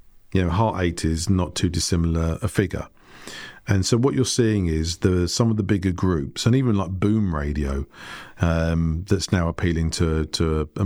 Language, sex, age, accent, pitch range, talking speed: English, male, 40-59, British, 85-100 Hz, 190 wpm